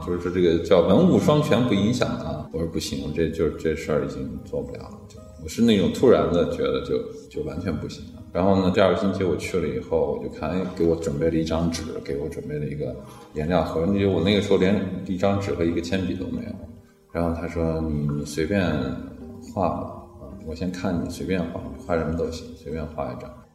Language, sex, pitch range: Chinese, male, 80-105 Hz